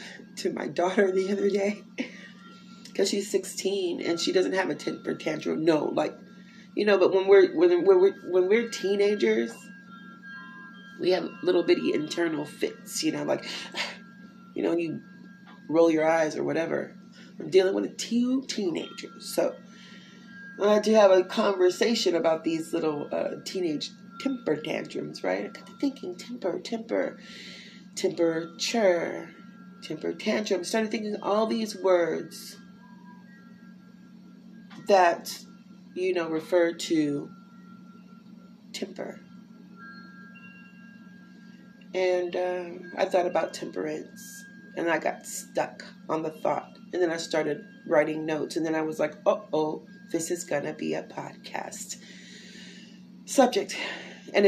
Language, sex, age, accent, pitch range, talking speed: English, female, 30-49, American, 185-205 Hz, 135 wpm